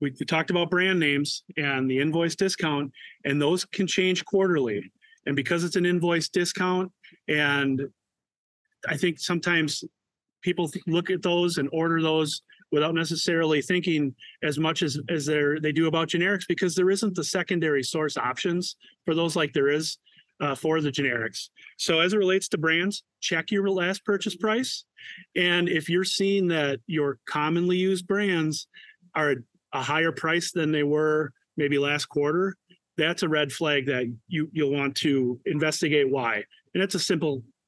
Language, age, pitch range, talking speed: English, 30-49, 145-175 Hz, 165 wpm